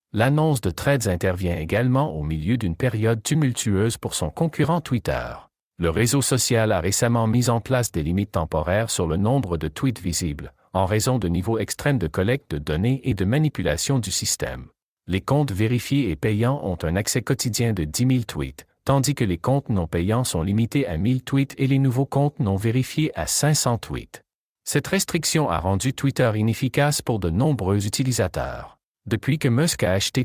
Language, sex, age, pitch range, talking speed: French, male, 50-69, 90-135 Hz, 185 wpm